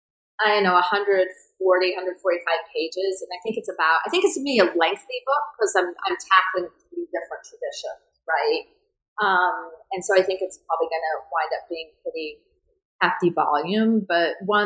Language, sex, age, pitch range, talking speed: English, female, 30-49, 165-210 Hz, 185 wpm